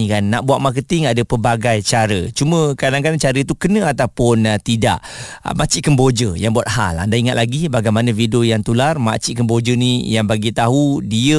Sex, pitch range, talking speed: male, 110-130 Hz, 185 wpm